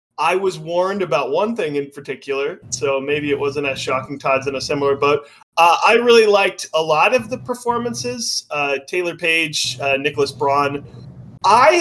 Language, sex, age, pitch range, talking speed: English, male, 30-49, 135-190 Hz, 180 wpm